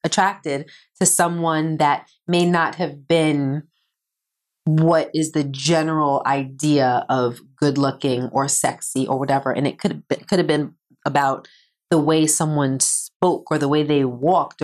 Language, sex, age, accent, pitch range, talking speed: English, female, 30-49, American, 145-175 Hz, 150 wpm